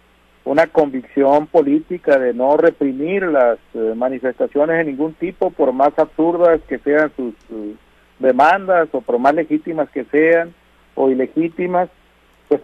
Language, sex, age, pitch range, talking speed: Spanish, male, 50-69, 130-165 Hz, 140 wpm